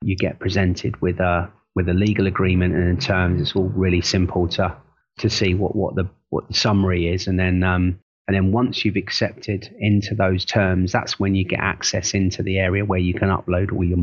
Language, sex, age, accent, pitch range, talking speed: English, male, 30-49, British, 95-105 Hz, 220 wpm